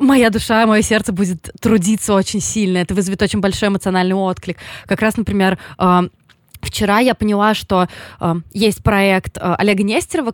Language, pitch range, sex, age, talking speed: Russian, 175-205 Hz, female, 20-39, 165 wpm